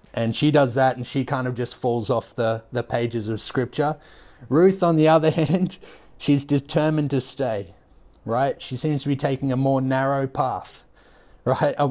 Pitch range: 120-145 Hz